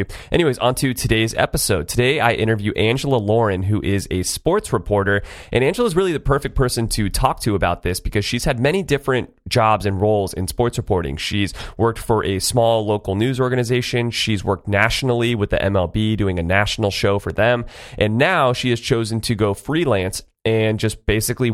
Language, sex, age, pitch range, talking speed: English, male, 30-49, 100-130 Hz, 190 wpm